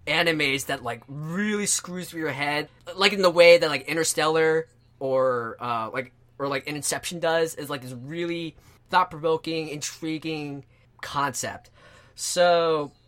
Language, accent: English, American